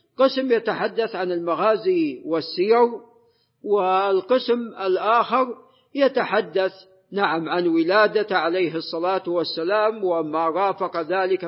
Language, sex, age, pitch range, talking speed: Arabic, male, 50-69, 175-215 Hz, 90 wpm